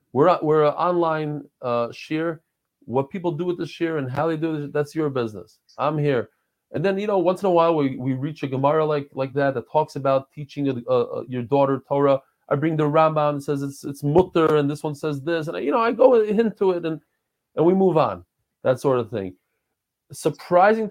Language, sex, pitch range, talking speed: English, male, 120-160 Hz, 225 wpm